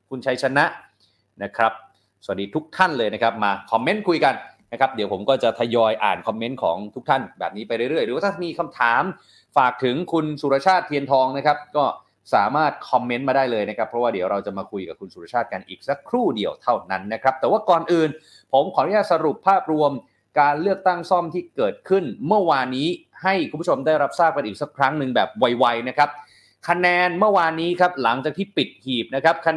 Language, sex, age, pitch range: Thai, male, 30-49, 125-165 Hz